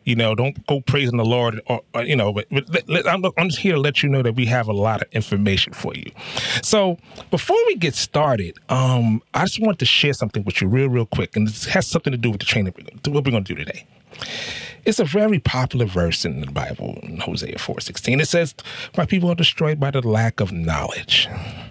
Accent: American